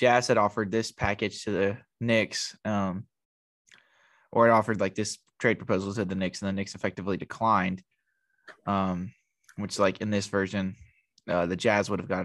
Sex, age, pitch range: male, 20-39, 95-110 Hz